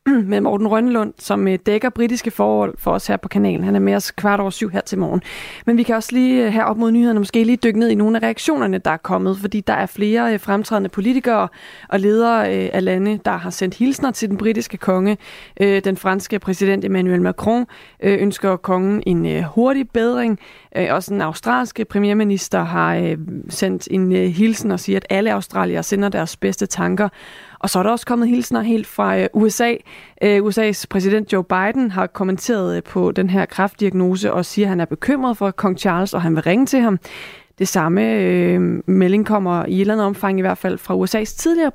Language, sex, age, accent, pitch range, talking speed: Danish, female, 30-49, native, 185-225 Hz, 200 wpm